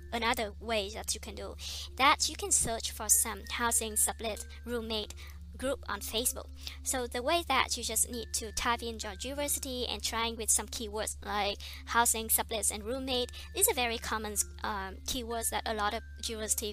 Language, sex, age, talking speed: Vietnamese, male, 20-39, 185 wpm